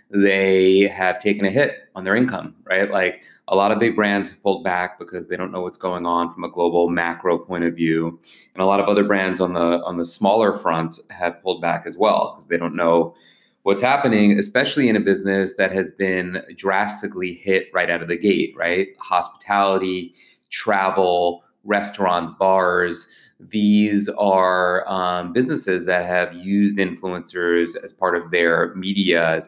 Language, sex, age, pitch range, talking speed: English, male, 30-49, 85-100 Hz, 175 wpm